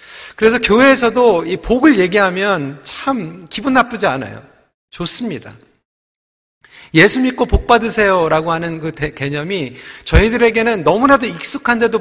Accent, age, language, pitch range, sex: native, 40-59, Korean, 170-250 Hz, male